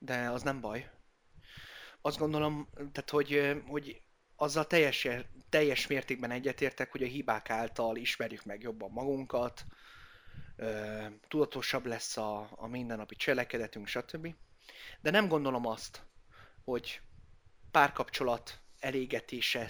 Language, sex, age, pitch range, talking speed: Hungarian, male, 30-49, 115-145 Hz, 105 wpm